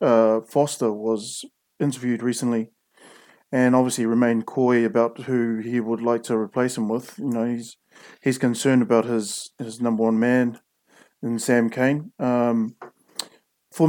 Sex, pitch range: male, 120-145 Hz